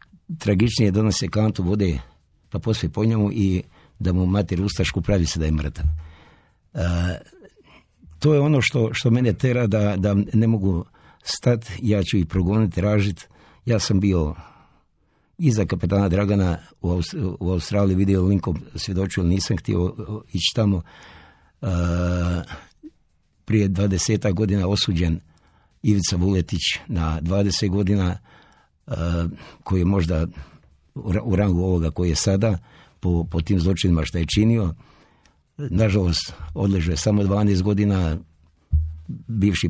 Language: Croatian